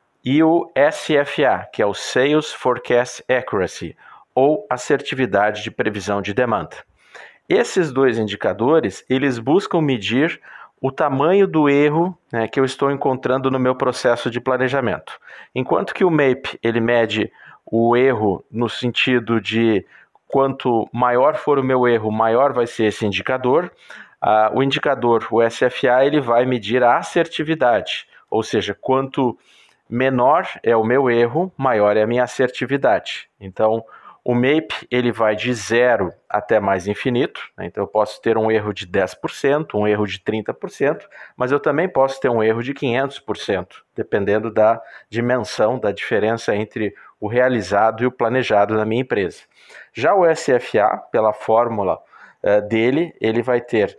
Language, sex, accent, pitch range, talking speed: Portuguese, male, Brazilian, 110-135 Hz, 150 wpm